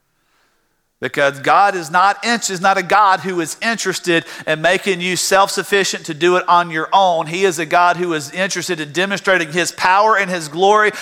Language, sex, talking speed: English, male, 190 wpm